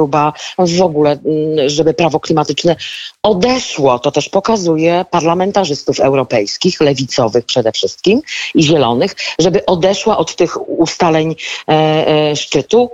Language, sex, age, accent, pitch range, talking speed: Polish, female, 40-59, native, 155-190 Hz, 105 wpm